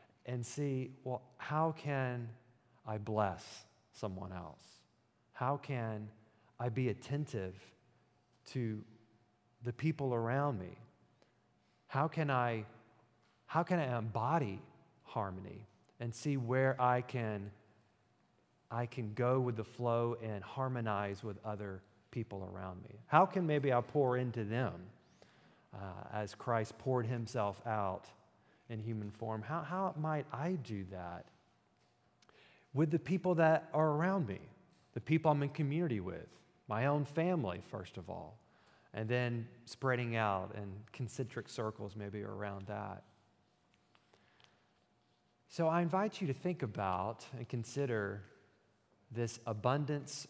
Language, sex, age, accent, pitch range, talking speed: English, male, 40-59, American, 105-140 Hz, 130 wpm